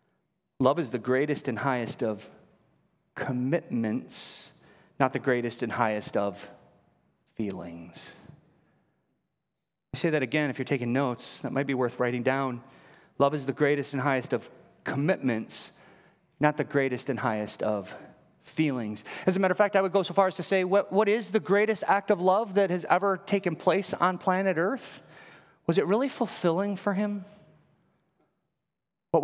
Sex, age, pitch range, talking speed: male, 30-49, 120-185 Hz, 165 wpm